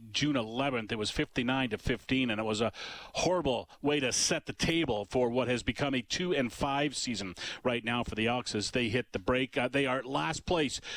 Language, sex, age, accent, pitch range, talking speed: English, male, 40-59, American, 120-145 Hz, 215 wpm